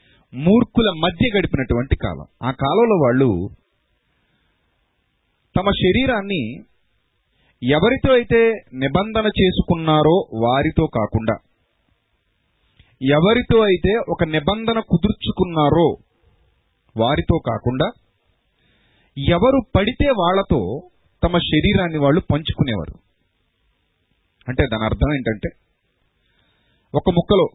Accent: native